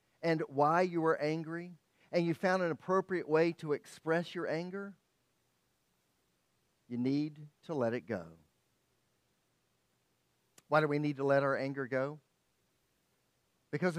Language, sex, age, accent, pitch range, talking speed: English, male, 50-69, American, 135-175 Hz, 135 wpm